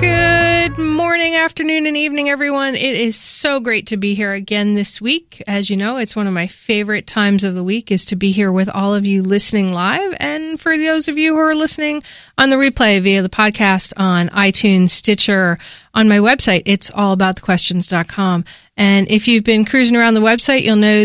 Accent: American